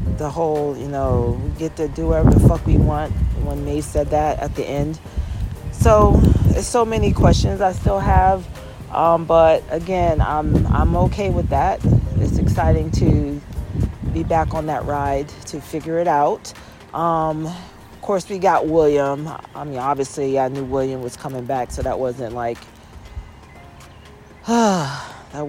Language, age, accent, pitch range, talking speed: English, 40-59, American, 125-165 Hz, 160 wpm